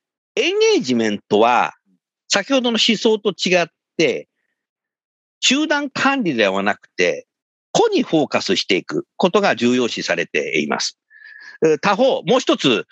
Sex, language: male, Japanese